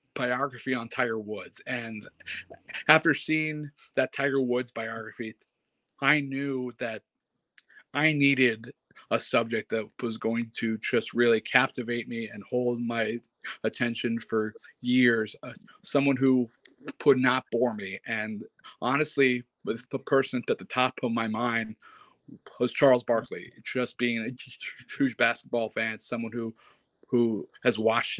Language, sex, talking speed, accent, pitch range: English, male, 135 wpm, American, 115-130 Hz